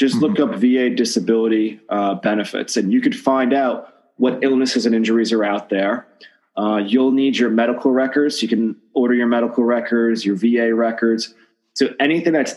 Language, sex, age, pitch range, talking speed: English, male, 30-49, 110-120 Hz, 175 wpm